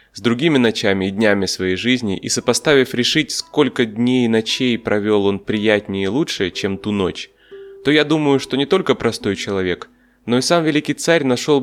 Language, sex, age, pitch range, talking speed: Russian, male, 20-39, 100-135 Hz, 185 wpm